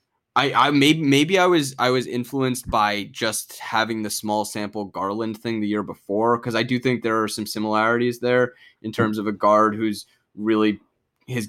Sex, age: male, 10-29